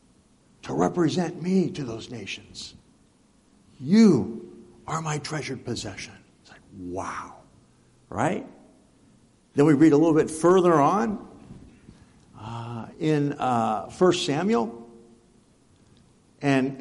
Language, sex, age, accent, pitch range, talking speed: English, male, 60-79, American, 130-175 Hz, 105 wpm